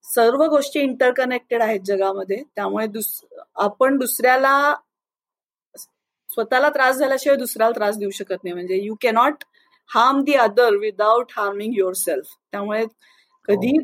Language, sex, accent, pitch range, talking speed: Marathi, female, native, 220-280 Hz, 120 wpm